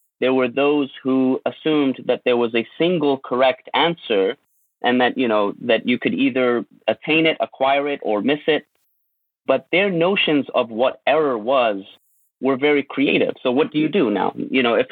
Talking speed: 185 wpm